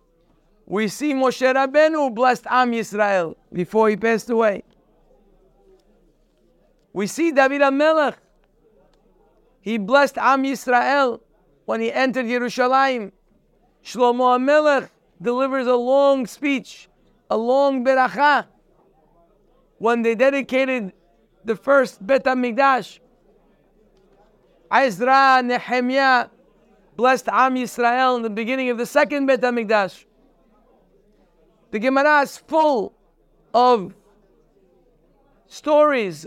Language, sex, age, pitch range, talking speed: English, male, 50-69, 210-270 Hz, 95 wpm